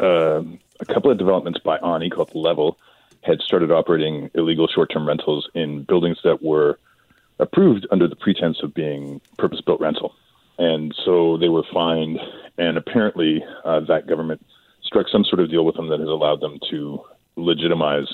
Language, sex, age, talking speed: English, male, 40-59, 165 wpm